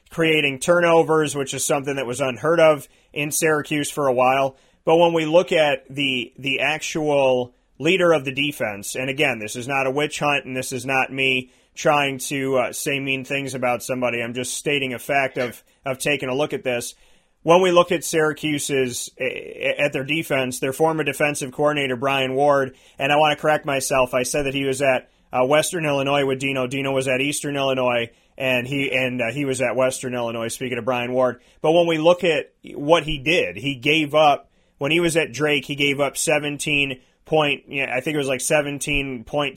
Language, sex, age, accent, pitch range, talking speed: English, male, 30-49, American, 130-155 Hz, 210 wpm